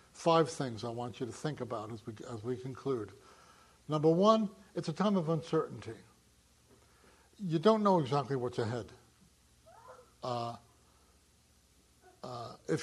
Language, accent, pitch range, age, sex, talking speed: English, American, 120-170 Hz, 60-79, male, 135 wpm